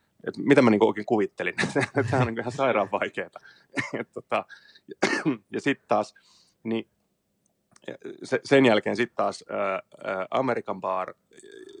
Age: 30-49